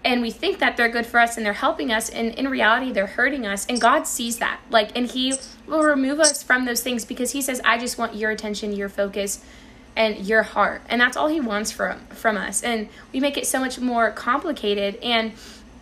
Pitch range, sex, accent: 220-255 Hz, female, American